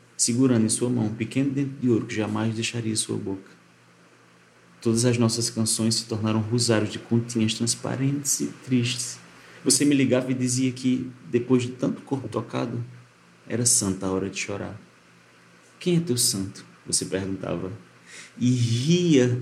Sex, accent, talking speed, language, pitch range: male, Brazilian, 160 wpm, Portuguese, 110-130 Hz